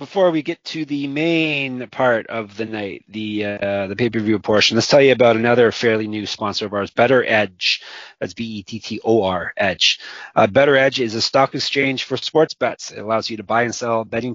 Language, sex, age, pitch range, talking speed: English, male, 30-49, 110-135 Hz, 220 wpm